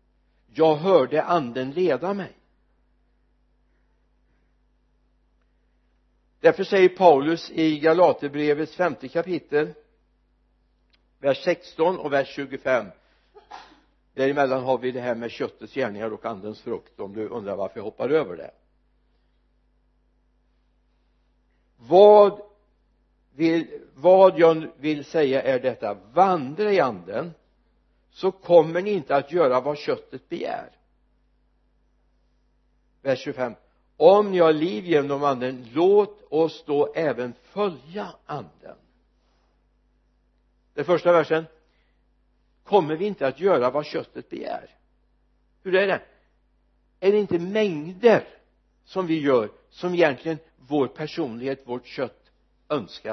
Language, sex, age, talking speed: Swedish, male, 60-79, 110 wpm